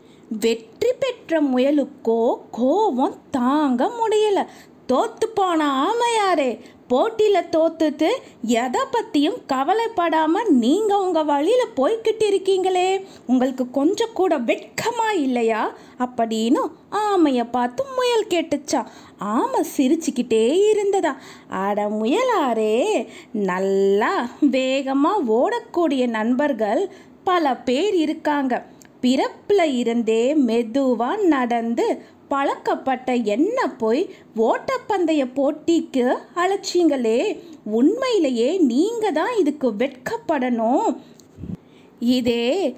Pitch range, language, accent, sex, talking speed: 245-375 Hz, Tamil, native, female, 80 wpm